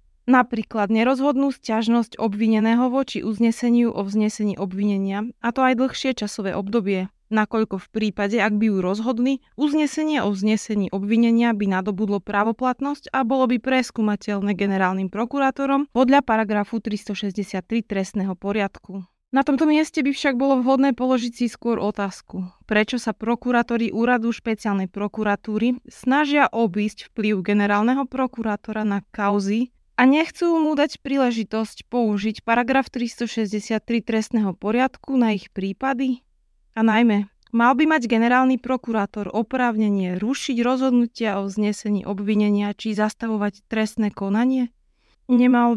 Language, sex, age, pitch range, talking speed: Slovak, female, 20-39, 205-255 Hz, 125 wpm